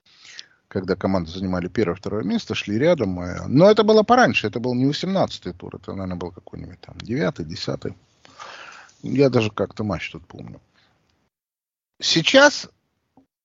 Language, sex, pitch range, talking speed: Russian, male, 115-185 Hz, 135 wpm